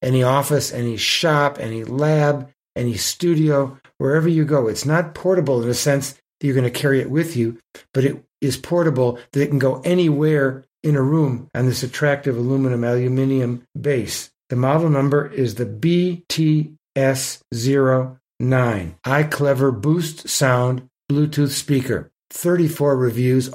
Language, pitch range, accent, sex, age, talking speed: English, 125-145 Hz, American, male, 60-79, 140 wpm